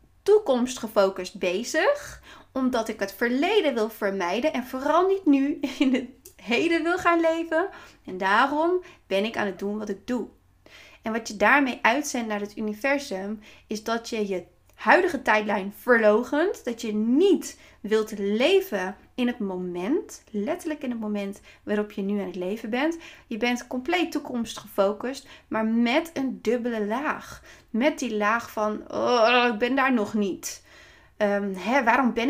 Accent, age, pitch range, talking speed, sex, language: Dutch, 30-49, 210-275 Hz, 160 wpm, female, Dutch